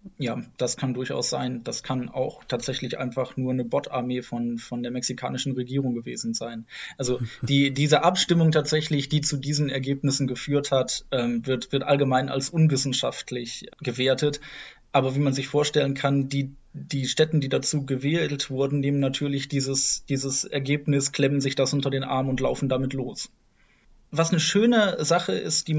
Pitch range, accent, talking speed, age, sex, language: 130-155 Hz, German, 170 wpm, 20-39, male, German